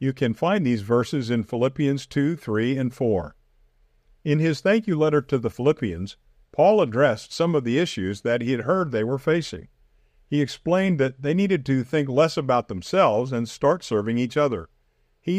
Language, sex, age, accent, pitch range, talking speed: English, male, 50-69, American, 110-150 Hz, 185 wpm